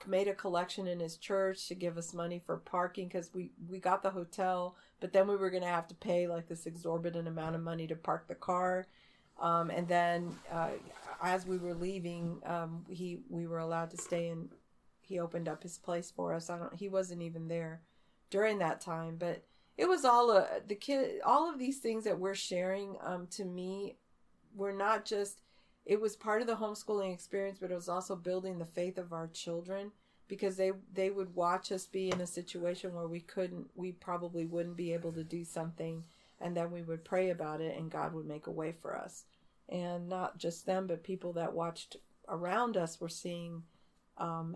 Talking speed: 210 wpm